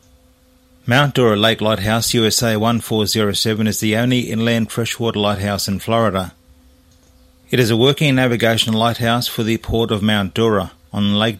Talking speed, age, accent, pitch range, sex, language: 145 wpm, 40-59, Australian, 90-115 Hz, male, English